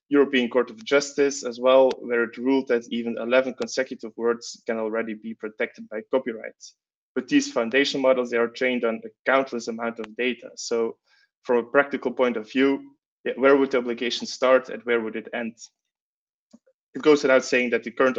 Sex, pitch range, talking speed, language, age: male, 115-140 Hz, 190 wpm, English, 20-39